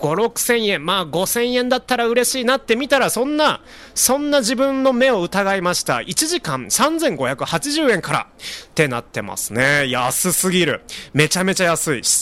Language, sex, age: Japanese, male, 30-49